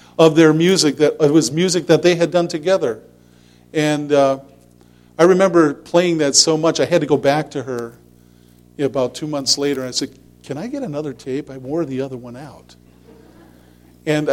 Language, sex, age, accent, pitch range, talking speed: English, male, 50-69, American, 115-160 Hz, 200 wpm